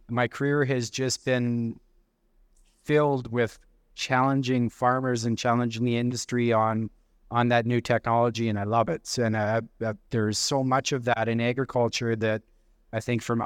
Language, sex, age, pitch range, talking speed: English, male, 30-49, 115-125 Hz, 160 wpm